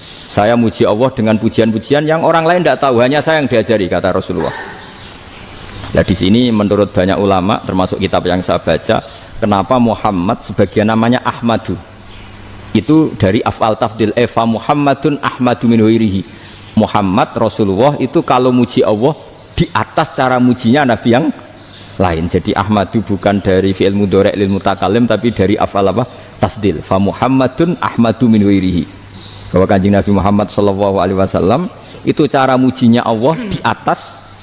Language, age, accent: Indonesian, 50-69, native